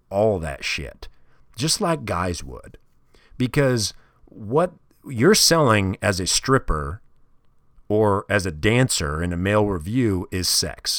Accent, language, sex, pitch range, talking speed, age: American, English, male, 90-130 Hz, 130 wpm, 40-59